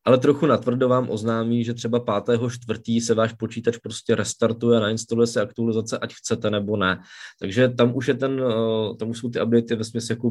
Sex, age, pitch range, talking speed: male, 20-39, 110-130 Hz, 190 wpm